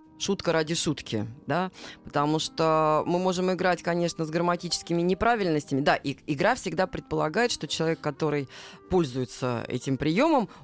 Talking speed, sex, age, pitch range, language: 135 wpm, female, 20-39, 155-215 Hz, Russian